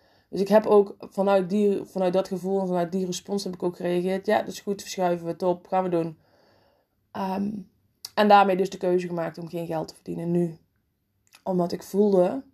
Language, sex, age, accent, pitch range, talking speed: Dutch, female, 20-39, Dutch, 170-225 Hz, 200 wpm